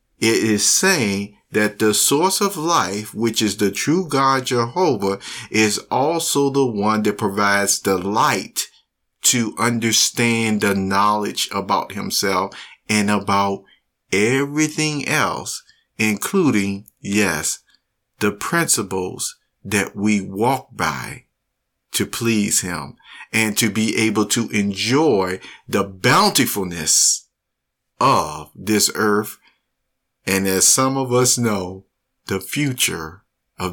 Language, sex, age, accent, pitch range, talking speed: English, male, 50-69, American, 95-120 Hz, 110 wpm